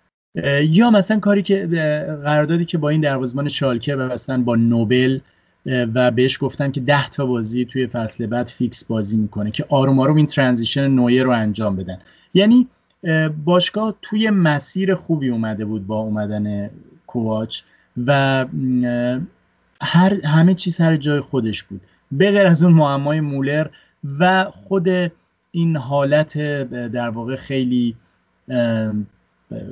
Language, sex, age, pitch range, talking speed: Persian, male, 30-49, 115-150 Hz, 130 wpm